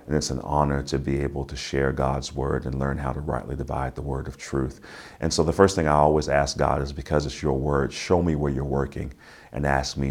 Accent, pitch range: American, 70-75 Hz